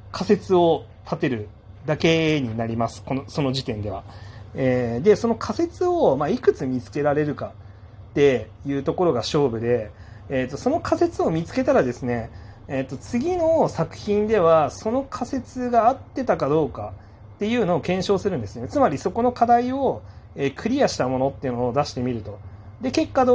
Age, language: 30-49, Japanese